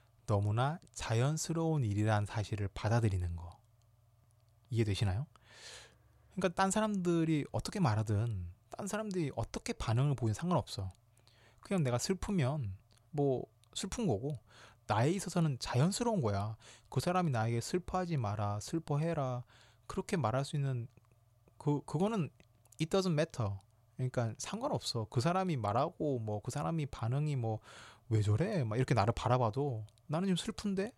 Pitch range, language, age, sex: 110-150 Hz, Korean, 20-39, male